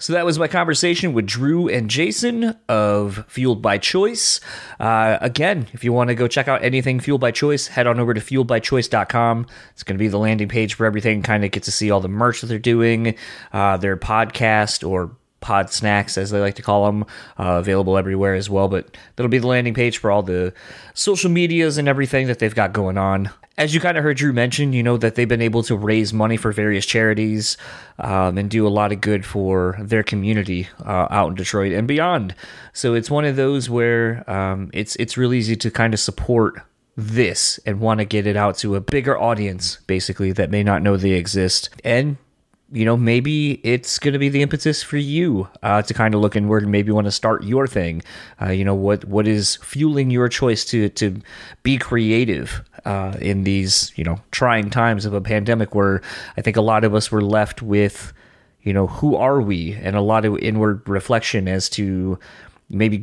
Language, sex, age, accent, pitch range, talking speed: English, male, 30-49, American, 100-125 Hz, 215 wpm